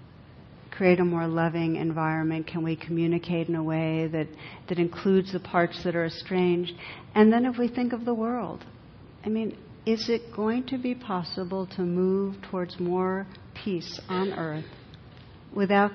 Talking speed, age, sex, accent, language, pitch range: 160 wpm, 60-79, female, American, English, 165-195 Hz